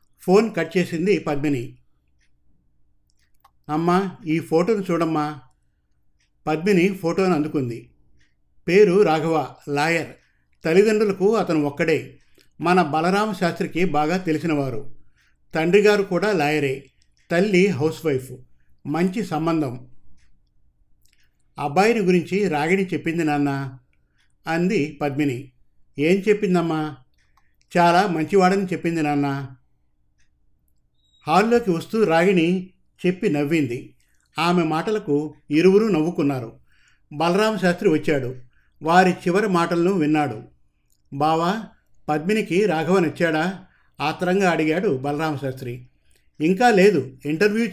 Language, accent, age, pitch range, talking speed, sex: Telugu, native, 50-69, 125-180 Hz, 85 wpm, male